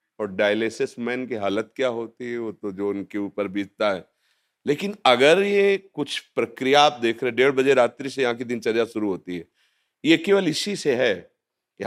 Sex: male